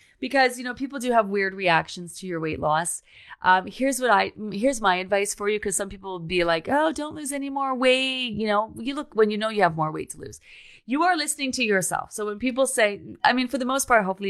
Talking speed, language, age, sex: 260 wpm, English, 30-49, female